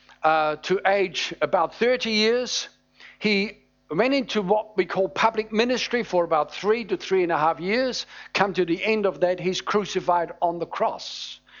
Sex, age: male, 50-69